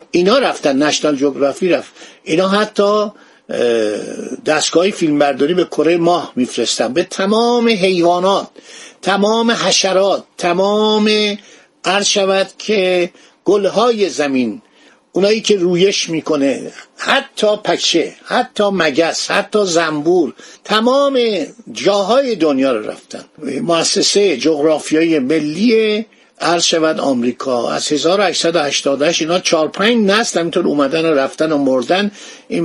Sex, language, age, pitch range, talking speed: male, Persian, 50-69, 160-215 Hz, 105 wpm